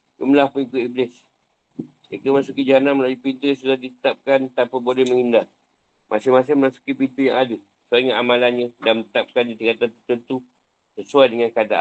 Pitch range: 125-140 Hz